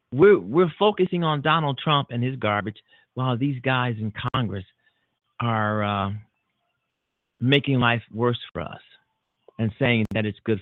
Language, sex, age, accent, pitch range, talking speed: English, male, 40-59, American, 115-150 Hz, 145 wpm